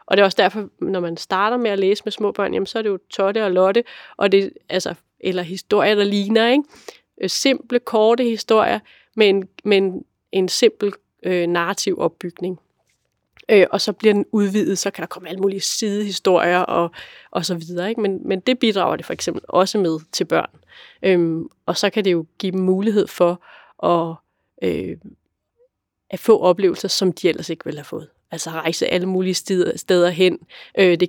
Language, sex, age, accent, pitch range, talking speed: Danish, female, 30-49, native, 180-210 Hz, 185 wpm